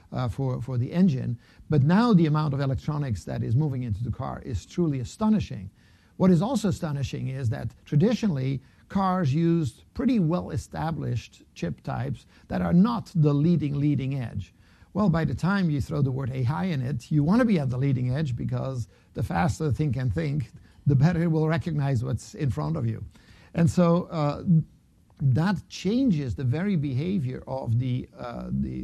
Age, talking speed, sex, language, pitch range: 60-79, 185 wpm, male, English, 125-170 Hz